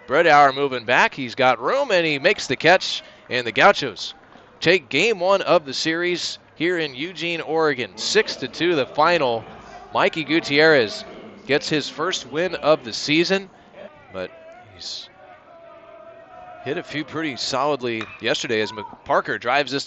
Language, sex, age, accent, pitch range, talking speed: English, male, 30-49, American, 145-205 Hz, 150 wpm